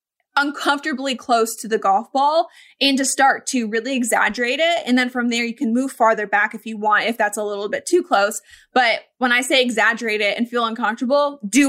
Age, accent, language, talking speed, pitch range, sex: 20-39, American, English, 215 wpm, 215-270 Hz, female